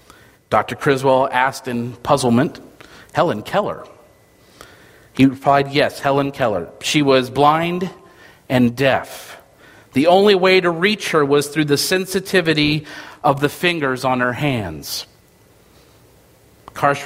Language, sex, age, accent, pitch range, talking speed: English, male, 40-59, American, 130-180 Hz, 120 wpm